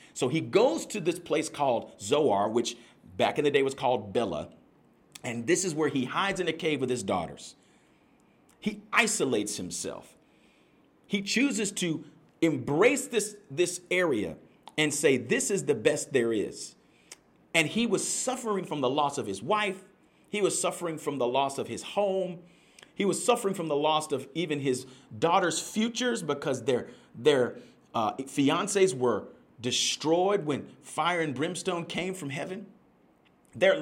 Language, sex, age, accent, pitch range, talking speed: English, male, 40-59, American, 145-210 Hz, 160 wpm